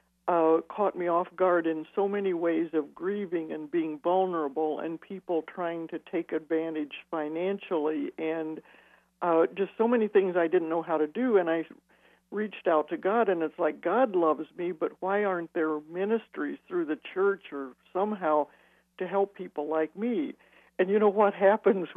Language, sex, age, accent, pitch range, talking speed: English, male, 60-79, American, 160-190 Hz, 180 wpm